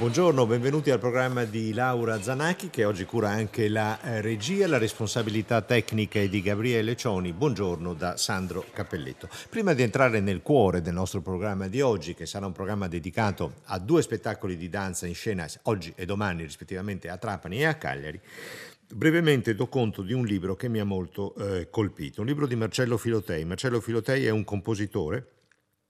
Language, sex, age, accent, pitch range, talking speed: Italian, male, 50-69, native, 90-115 Hz, 180 wpm